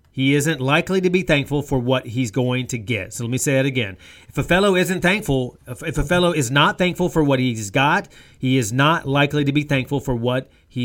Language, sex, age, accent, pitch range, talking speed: English, male, 30-49, American, 115-140 Hz, 240 wpm